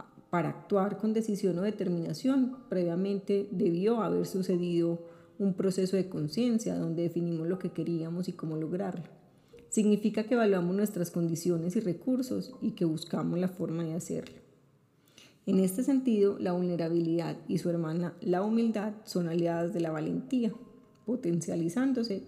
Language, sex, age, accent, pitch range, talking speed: Spanish, female, 30-49, Colombian, 170-215 Hz, 140 wpm